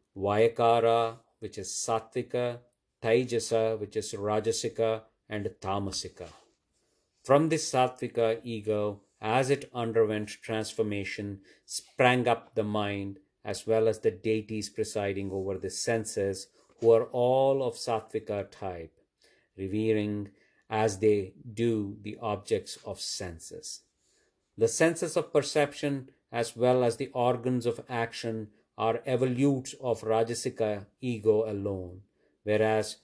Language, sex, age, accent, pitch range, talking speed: English, male, 50-69, Indian, 105-125 Hz, 115 wpm